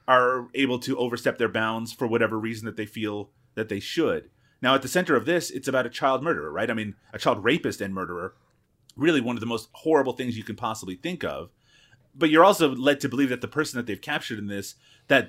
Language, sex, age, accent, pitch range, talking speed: English, male, 30-49, American, 110-135 Hz, 240 wpm